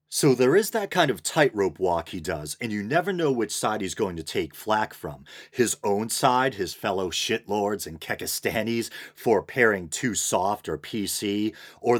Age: 40-59